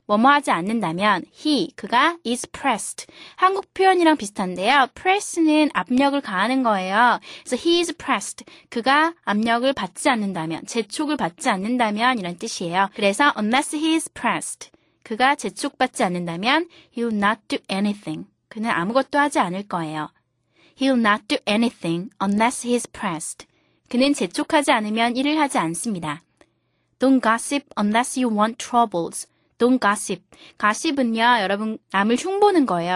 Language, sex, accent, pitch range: Korean, female, native, 200-285 Hz